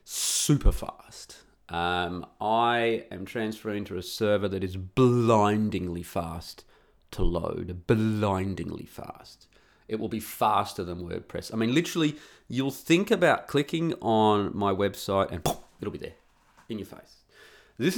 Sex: male